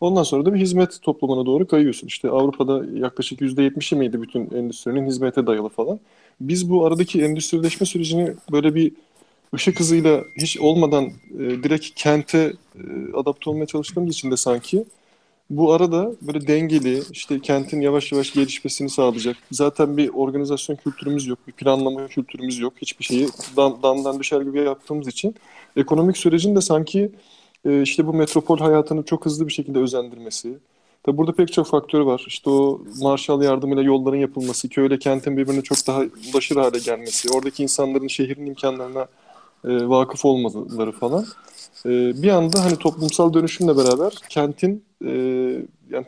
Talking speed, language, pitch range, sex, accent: 145 wpm, Turkish, 135-165 Hz, male, native